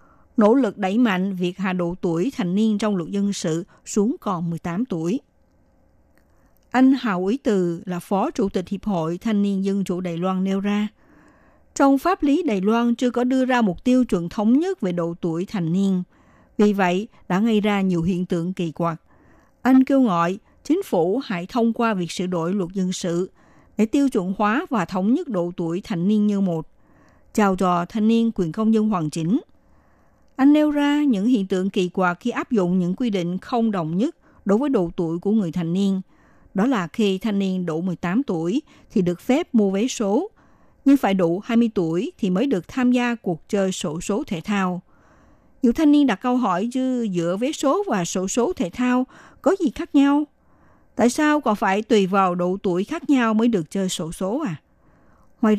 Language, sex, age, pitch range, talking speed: Vietnamese, female, 60-79, 180-245 Hz, 205 wpm